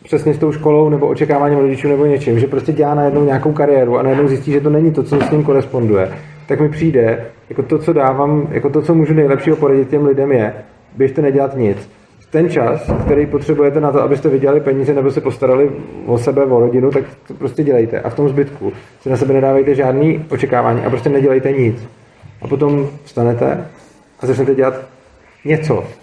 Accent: native